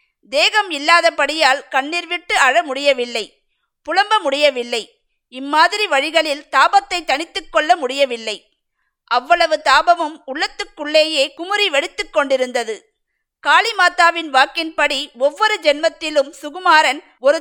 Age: 50-69